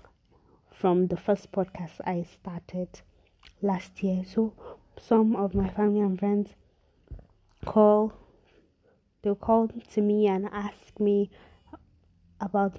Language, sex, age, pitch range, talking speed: English, female, 20-39, 180-210 Hz, 115 wpm